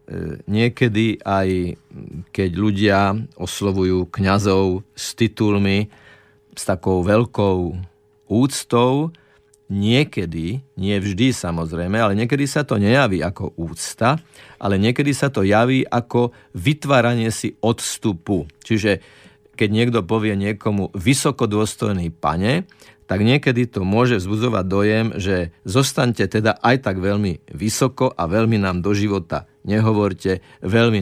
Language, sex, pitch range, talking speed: Slovak, male, 95-120 Hz, 115 wpm